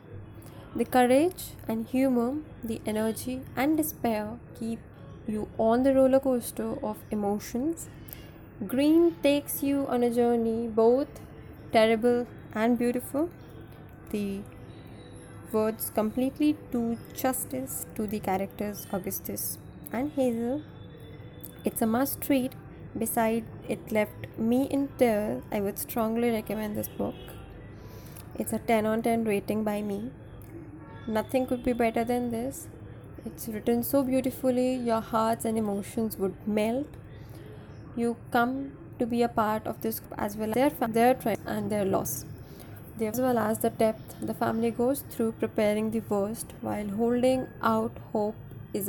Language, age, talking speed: English, 20-39, 135 wpm